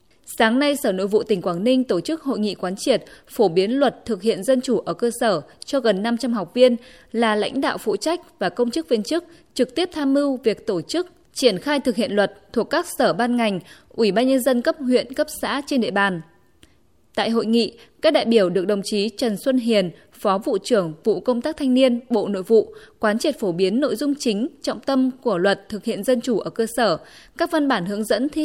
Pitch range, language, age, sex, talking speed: 205-270 Hz, Vietnamese, 20-39, female, 240 wpm